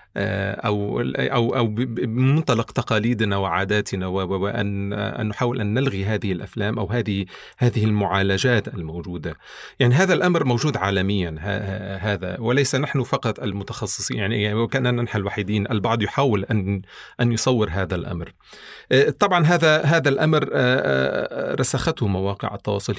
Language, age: Arabic, 40-59